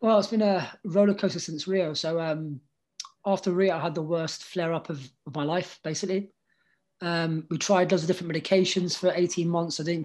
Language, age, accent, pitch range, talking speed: English, 20-39, British, 155-185 Hz, 205 wpm